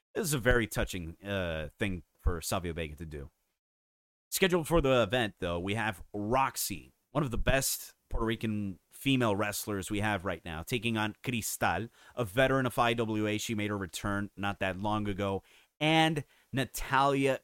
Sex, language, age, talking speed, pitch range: male, English, 30-49, 170 wpm, 100-130 Hz